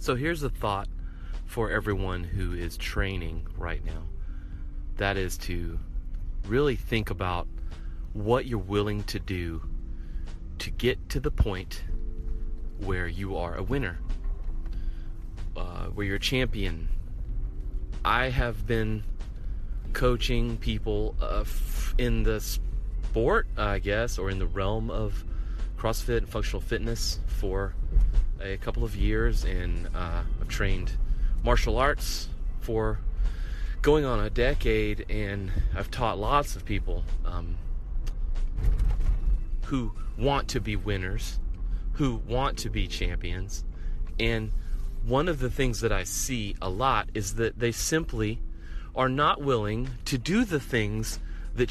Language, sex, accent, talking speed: English, male, American, 130 wpm